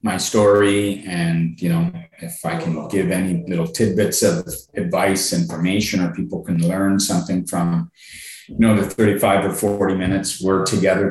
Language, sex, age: English, male, 30-49